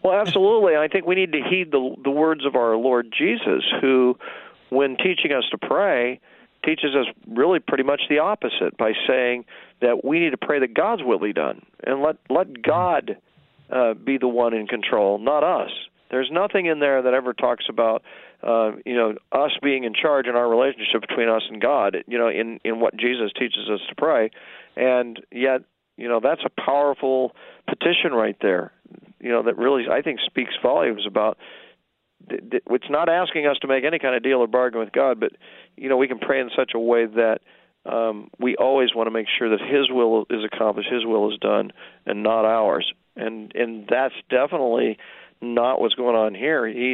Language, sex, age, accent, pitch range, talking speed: English, male, 40-59, American, 115-135 Hz, 200 wpm